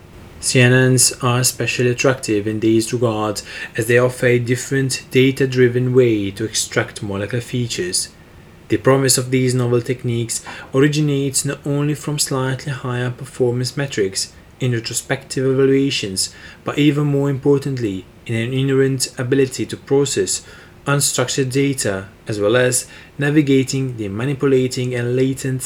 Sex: male